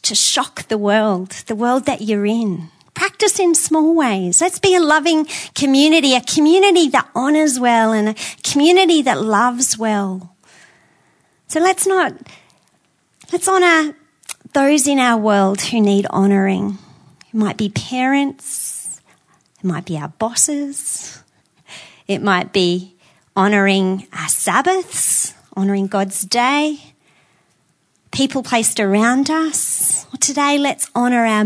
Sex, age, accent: female, 40-59, Australian